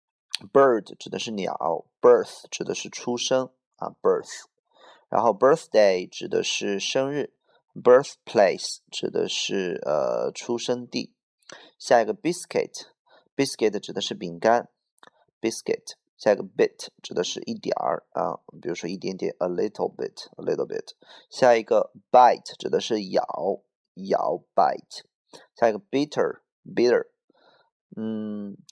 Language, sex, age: Chinese, male, 30-49